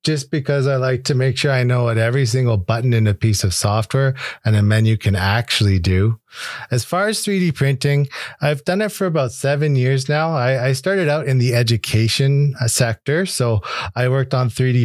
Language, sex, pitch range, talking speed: English, male, 110-140 Hz, 200 wpm